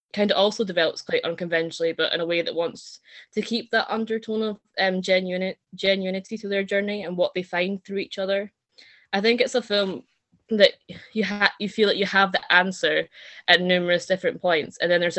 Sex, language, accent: female, English, British